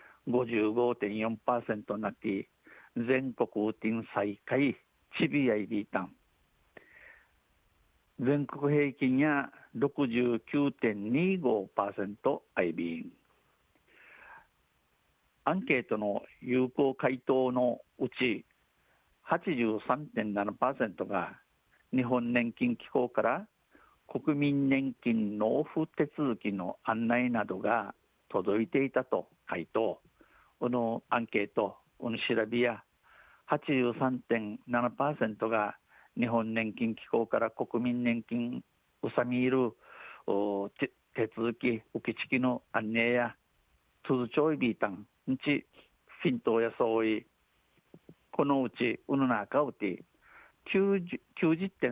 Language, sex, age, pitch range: Japanese, male, 50-69, 110-135 Hz